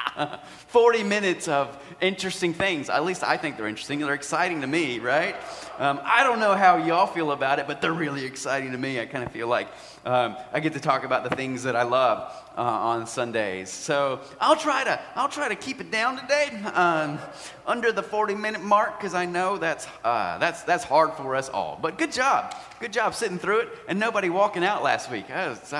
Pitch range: 130-180 Hz